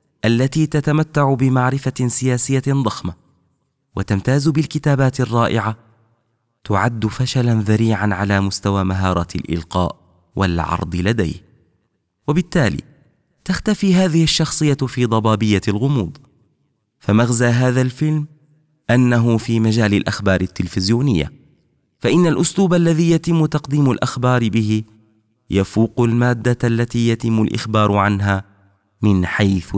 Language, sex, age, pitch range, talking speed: Arabic, male, 30-49, 105-140 Hz, 95 wpm